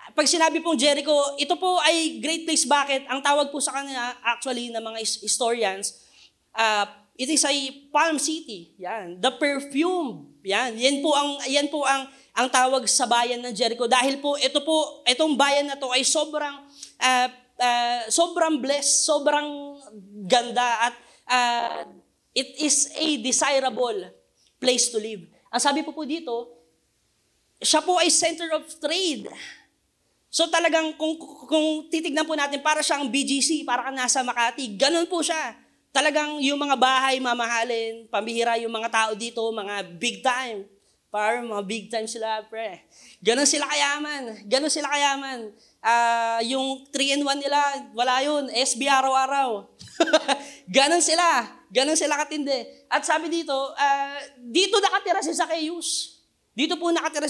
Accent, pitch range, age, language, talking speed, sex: native, 240-300 Hz, 20-39, Filipino, 150 wpm, female